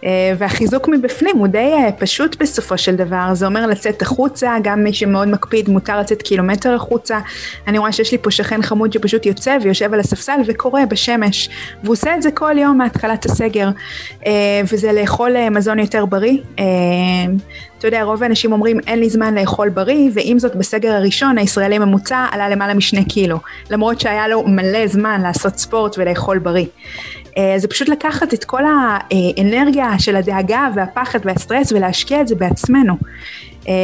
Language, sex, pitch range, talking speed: Hebrew, female, 195-230 Hz, 165 wpm